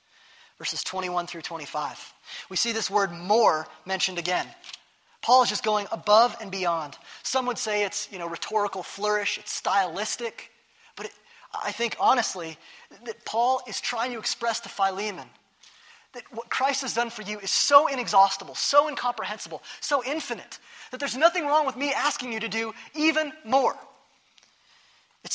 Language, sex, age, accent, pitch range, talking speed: English, male, 20-39, American, 185-245 Hz, 160 wpm